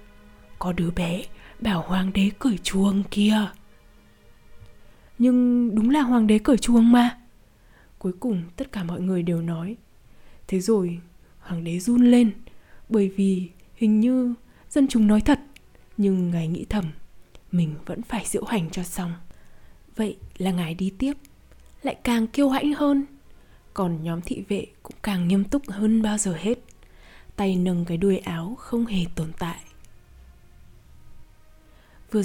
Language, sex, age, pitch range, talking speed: Vietnamese, female, 20-39, 180-235 Hz, 155 wpm